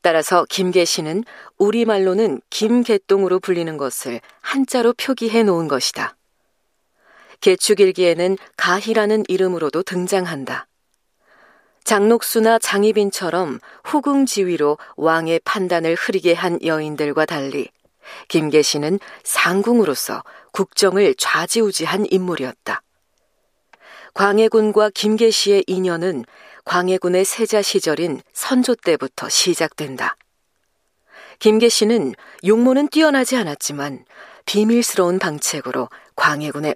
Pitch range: 170-220 Hz